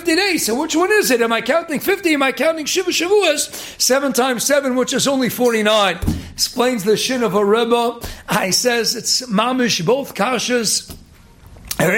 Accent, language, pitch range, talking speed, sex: American, English, 235-315 Hz, 170 wpm, male